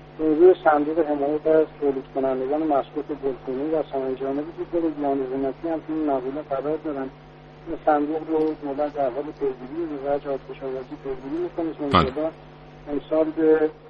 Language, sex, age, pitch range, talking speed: Persian, male, 60-79, 140-160 Hz, 95 wpm